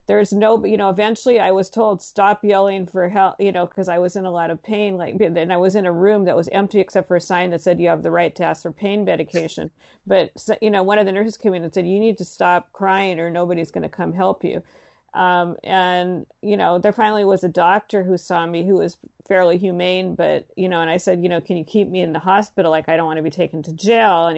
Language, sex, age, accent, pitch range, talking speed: English, female, 40-59, American, 170-200 Hz, 275 wpm